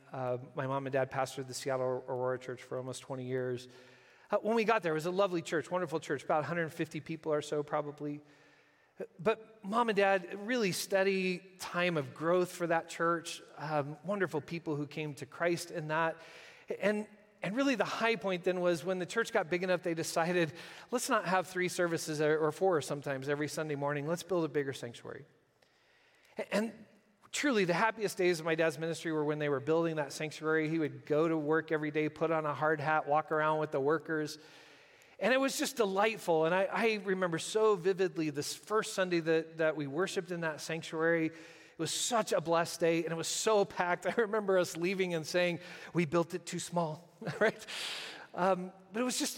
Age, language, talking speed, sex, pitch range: 40-59, English, 205 wpm, male, 155-195 Hz